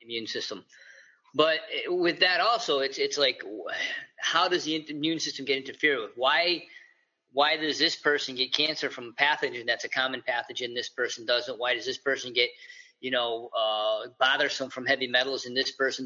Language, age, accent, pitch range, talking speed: English, 30-49, American, 130-175 Hz, 185 wpm